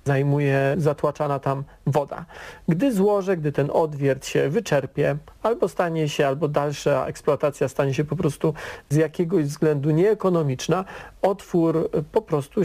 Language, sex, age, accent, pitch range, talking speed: Polish, male, 40-59, native, 145-175 Hz, 135 wpm